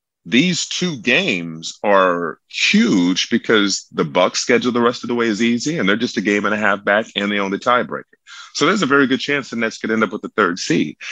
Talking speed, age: 245 wpm, 30-49